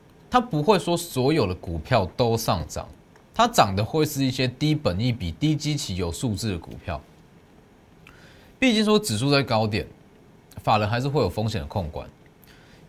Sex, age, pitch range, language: male, 20-39, 100-155 Hz, Chinese